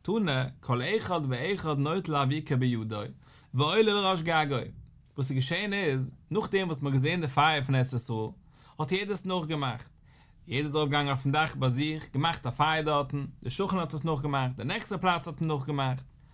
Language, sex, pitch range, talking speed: English, male, 130-180 Hz, 180 wpm